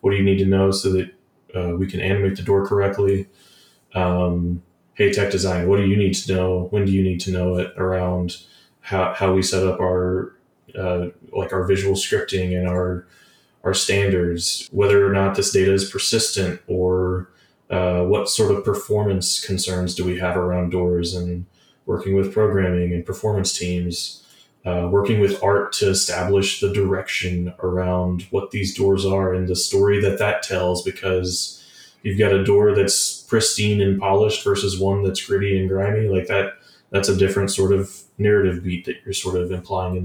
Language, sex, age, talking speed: English, male, 20-39, 185 wpm